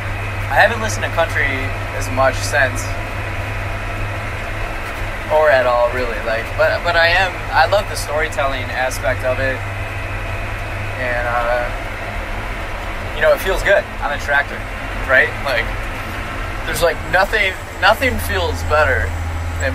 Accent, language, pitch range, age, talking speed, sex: American, English, 95-105 Hz, 20-39, 130 wpm, male